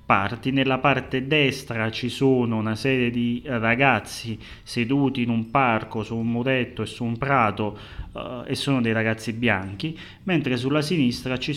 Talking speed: 155 wpm